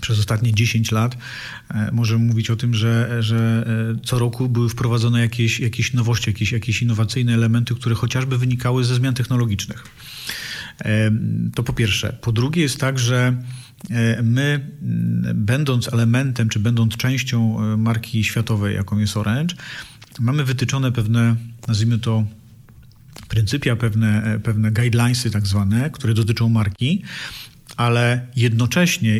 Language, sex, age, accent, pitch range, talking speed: Polish, male, 40-59, native, 110-125 Hz, 125 wpm